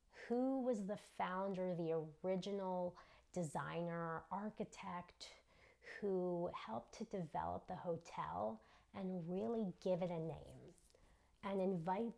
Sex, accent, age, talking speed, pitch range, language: female, American, 30-49, 110 wpm, 170-215 Hz, English